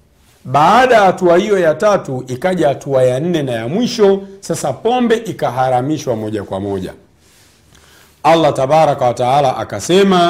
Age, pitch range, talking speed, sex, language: 50-69, 120-160 Hz, 130 wpm, male, Swahili